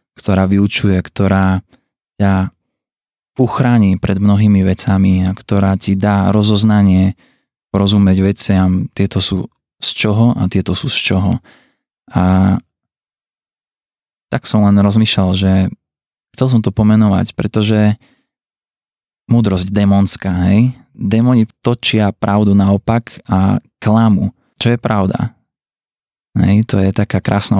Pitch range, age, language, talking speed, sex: 95-105 Hz, 20-39, Slovak, 115 wpm, male